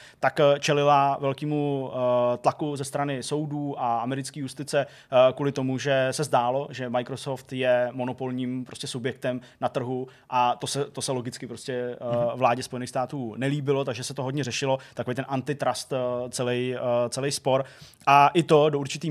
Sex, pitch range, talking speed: male, 125-145 Hz, 150 wpm